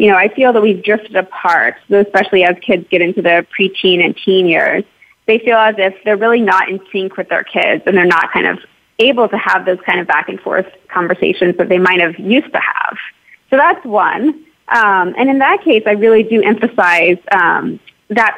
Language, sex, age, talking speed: English, female, 20-39, 210 wpm